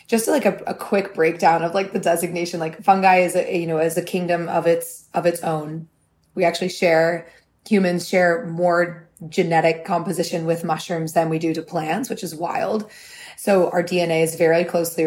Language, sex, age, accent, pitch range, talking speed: English, female, 20-39, American, 165-190 Hz, 190 wpm